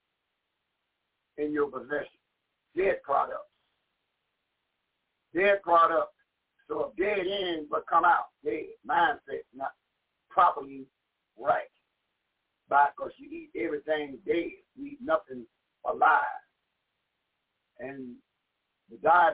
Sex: male